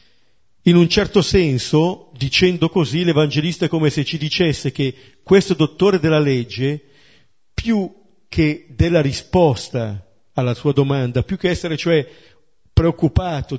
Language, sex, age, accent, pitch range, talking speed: Italian, male, 50-69, native, 130-180 Hz, 130 wpm